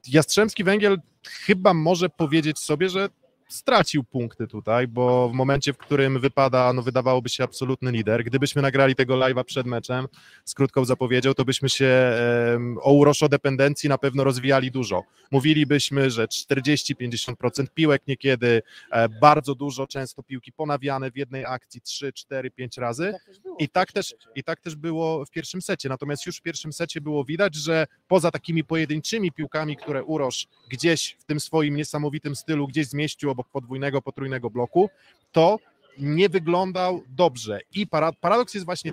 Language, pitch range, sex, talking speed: Polish, 135-175 Hz, male, 155 wpm